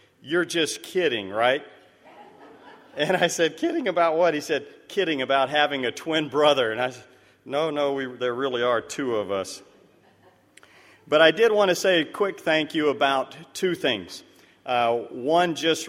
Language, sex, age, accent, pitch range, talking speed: English, male, 40-59, American, 120-140 Hz, 175 wpm